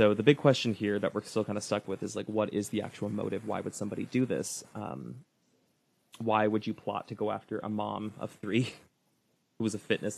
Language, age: English, 20-39